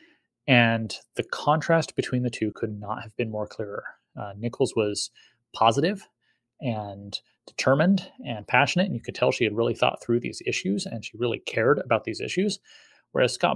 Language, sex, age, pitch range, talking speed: English, male, 30-49, 105-135 Hz, 175 wpm